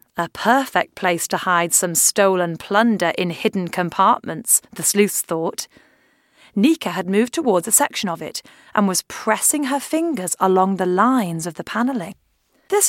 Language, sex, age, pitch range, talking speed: English, female, 30-49, 190-295 Hz, 160 wpm